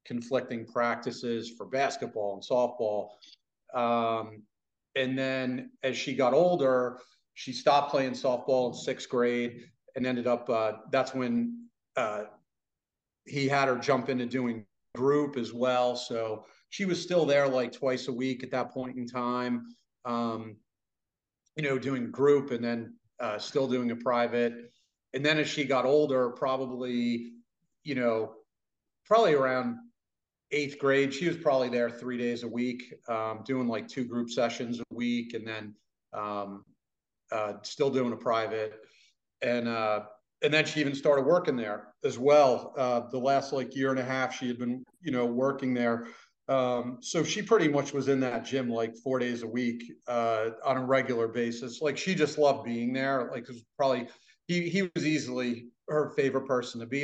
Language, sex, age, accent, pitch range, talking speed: English, male, 40-59, American, 120-135 Hz, 170 wpm